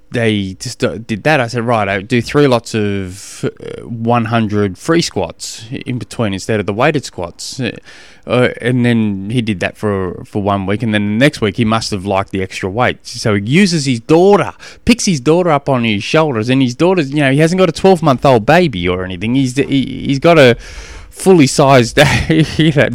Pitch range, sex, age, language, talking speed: 105-145 Hz, male, 20-39, English, 205 wpm